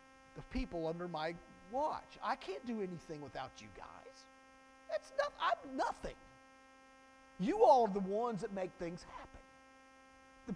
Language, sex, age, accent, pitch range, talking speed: English, male, 50-69, American, 195-265 Hz, 150 wpm